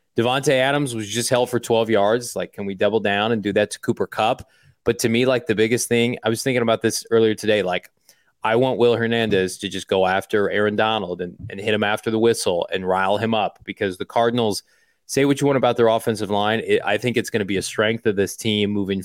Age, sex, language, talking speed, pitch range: 30-49, male, English, 250 wpm, 105-120 Hz